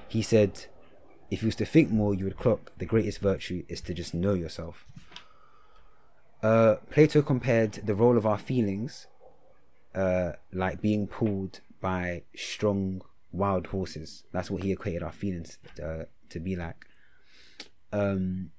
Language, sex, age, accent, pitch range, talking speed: English, male, 20-39, British, 90-105 Hz, 150 wpm